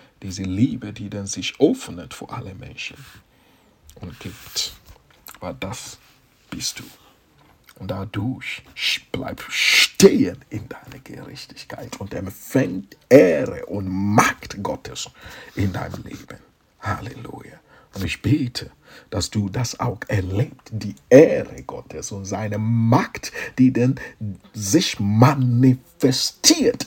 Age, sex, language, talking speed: 60-79, male, English, 110 wpm